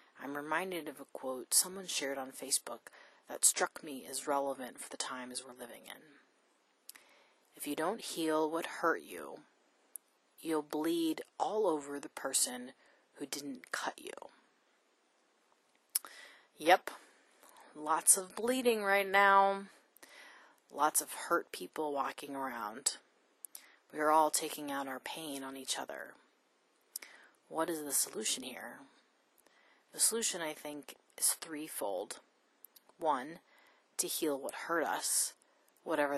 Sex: female